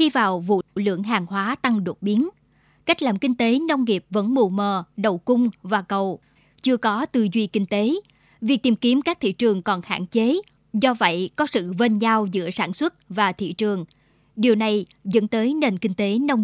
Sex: male